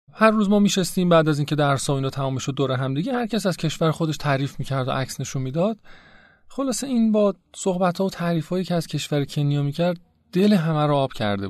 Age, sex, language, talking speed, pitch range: 30-49, male, Persian, 230 wpm, 110-165 Hz